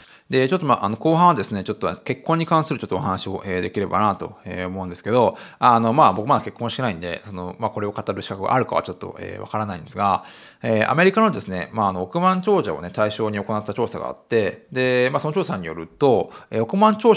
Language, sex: Japanese, male